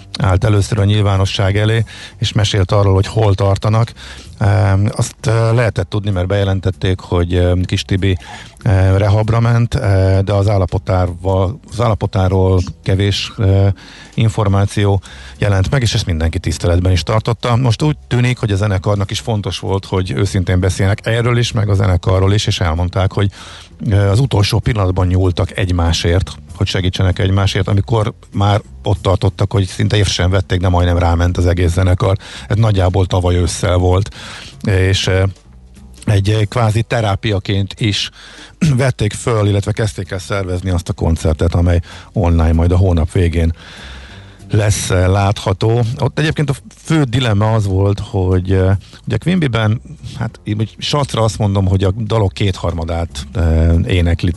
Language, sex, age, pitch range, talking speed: Hungarian, male, 50-69, 90-110 Hz, 140 wpm